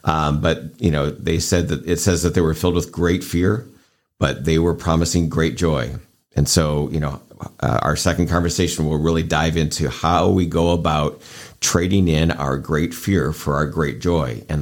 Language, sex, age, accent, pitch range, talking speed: English, male, 50-69, American, 75-90 Hz, 195 wpm